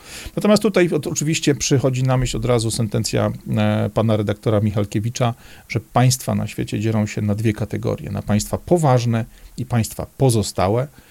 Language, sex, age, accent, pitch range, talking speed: Polish, male, 40-59, native, 105-130 Hz, 145 wpm